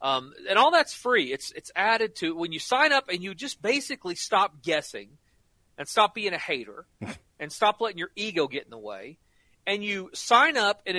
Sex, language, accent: male, English, American